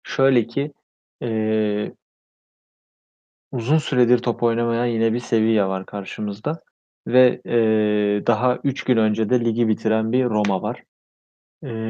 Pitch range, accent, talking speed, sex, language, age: 105-125 Hz, native, 125 wpm, male, Turkish, 30-49